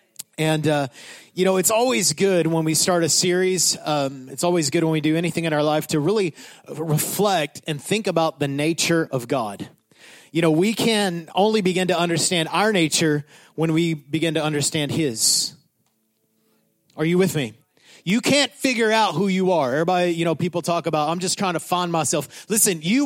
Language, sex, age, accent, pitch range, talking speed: English, male, 30-49, American, 160-215 Hz, 195 wpm